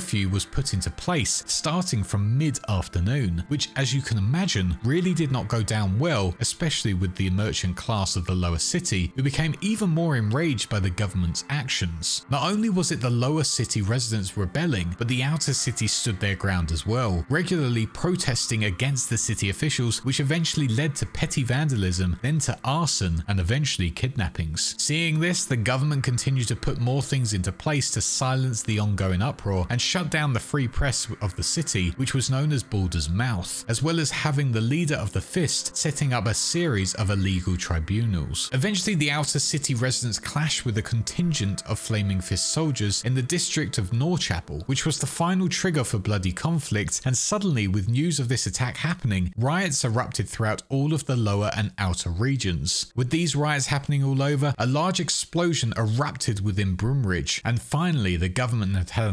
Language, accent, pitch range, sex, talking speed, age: English, British, 100-145 Hz, male, 185 wpm, 30-49